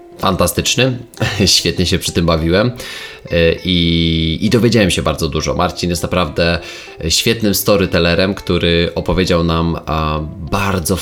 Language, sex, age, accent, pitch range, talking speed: Polish, male, 20-39, native, 85-115 Hz, 115 wpm